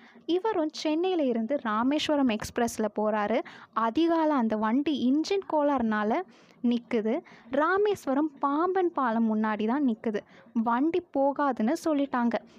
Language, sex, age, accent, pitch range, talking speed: Tamil, female, 20-39, native, 225-295 Hz, 100 wpm